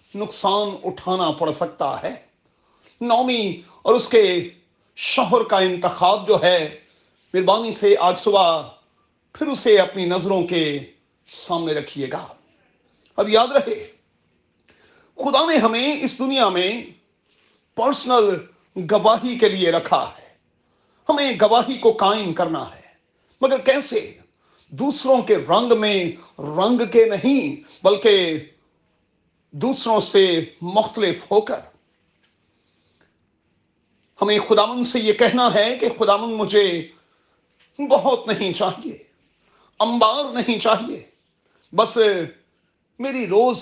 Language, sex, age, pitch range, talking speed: Urdu, male, 40-59, 185-255 Hz, 110 wpm